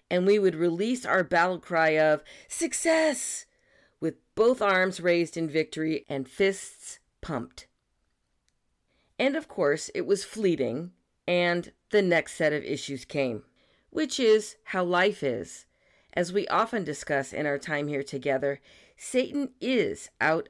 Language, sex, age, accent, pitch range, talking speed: English, female, 40-59, American, 150-220 Hz, 140 wpm